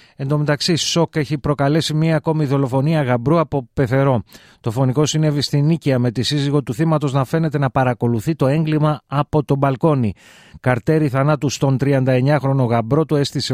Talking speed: 170 wpm